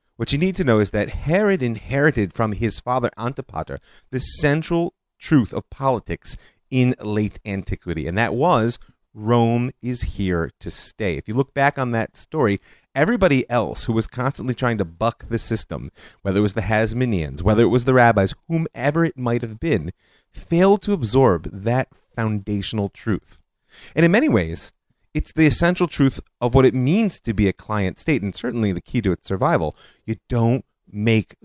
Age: 30-49